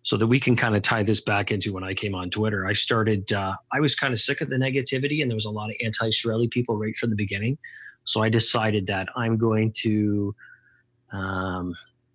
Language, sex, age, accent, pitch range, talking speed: English, male, 30-49, American, 100-125 Hz, 230 wpm